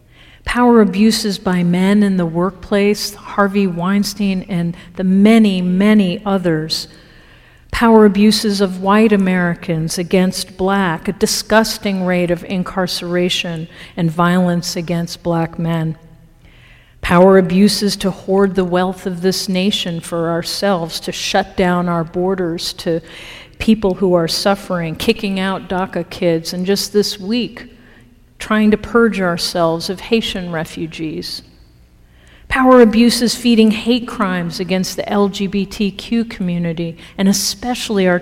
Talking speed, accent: 125 wpm, American